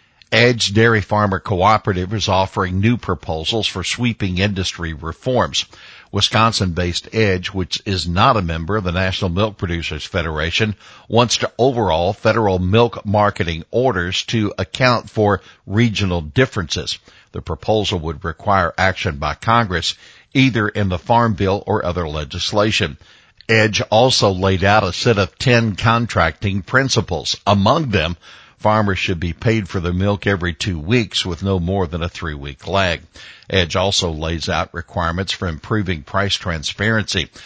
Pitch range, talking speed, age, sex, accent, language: 90-110 Hz, 145 wpm, 60-79, male, American, English